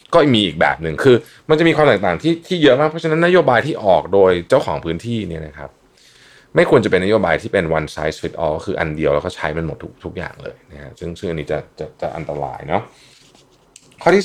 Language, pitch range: Thai, 80-125 Hz